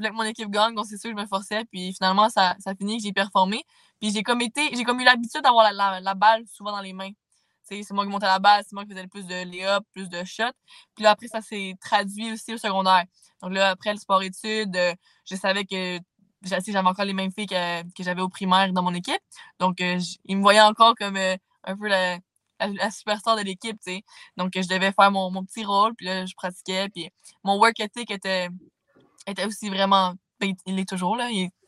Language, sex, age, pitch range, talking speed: French, female, 20-39, 190-220 Hz, 245 wpm